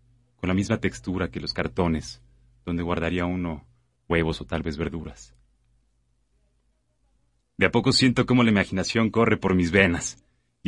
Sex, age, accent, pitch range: male, 30-49, Mexican, 90-120 Hz